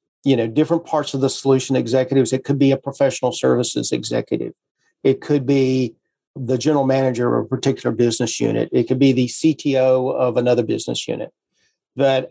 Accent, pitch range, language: American, 130-150 Hz, English